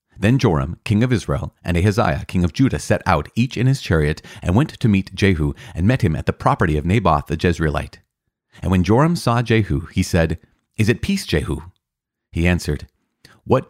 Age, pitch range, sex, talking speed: 30-49, 85-110 Hz, male, 195 wpm